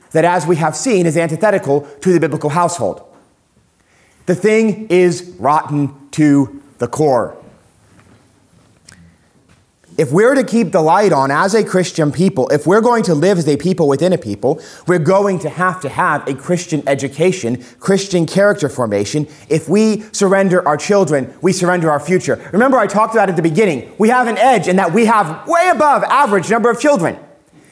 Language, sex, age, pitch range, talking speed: English, male, 30-49, 140-190 Hz, 180 wpm